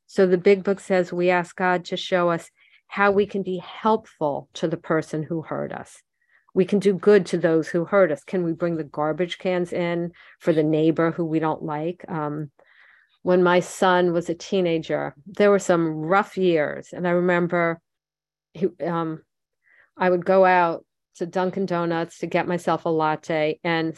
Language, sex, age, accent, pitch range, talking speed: English, female, 50-69, American, 165-190 Hz, 185 wpm